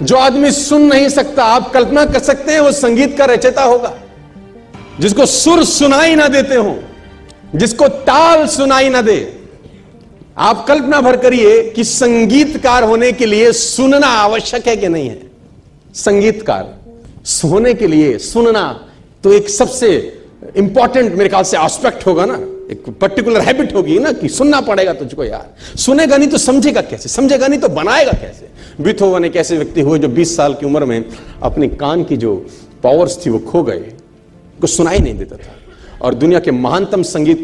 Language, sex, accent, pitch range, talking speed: Hindi, male, native, 185-275 Hz, 105 wpm